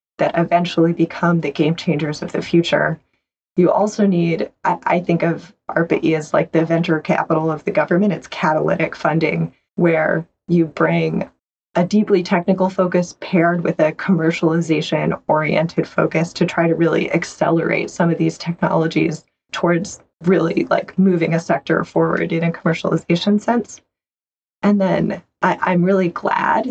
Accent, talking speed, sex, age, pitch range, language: American, 150 wpm, female, 20-39, 165-185 Hz, English